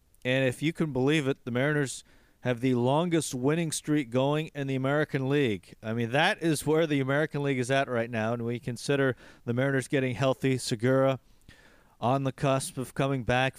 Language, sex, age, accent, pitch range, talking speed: English, male, 40-59, American, 120-145 Hz, 195 wpm